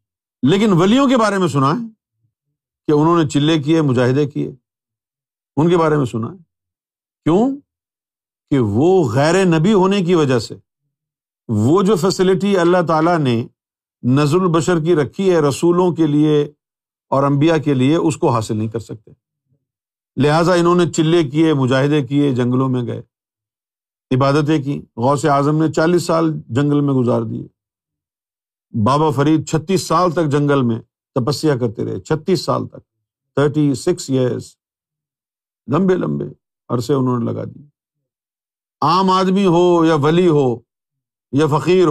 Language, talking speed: Urdu, 150 wpm